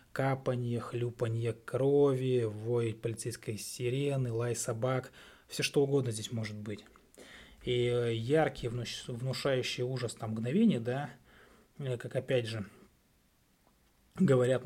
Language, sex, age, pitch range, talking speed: Russian, male, 20-39, 120-140 Hz, 100 wpm